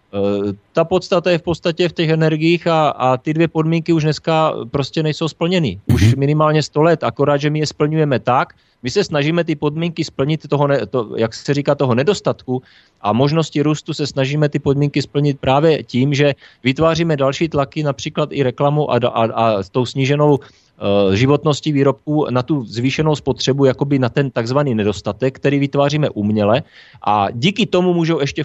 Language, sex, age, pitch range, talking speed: Slovak, male, 30-49, 130-155 Hz, 180 wpm